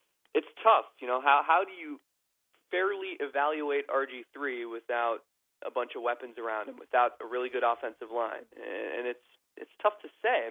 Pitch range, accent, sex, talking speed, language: 125-160 Hz, American, male, 185 wpm, English